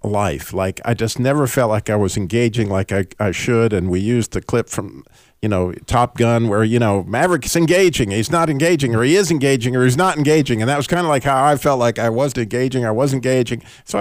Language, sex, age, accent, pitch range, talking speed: English, male, 50-69, American, 105-140 Hz, 245 wpm